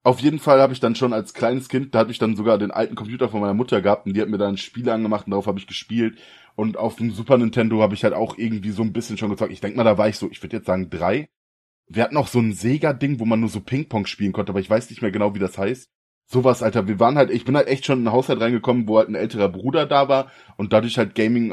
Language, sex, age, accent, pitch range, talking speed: German, male, 20-39, German, 105-125 Hz, 305 wpm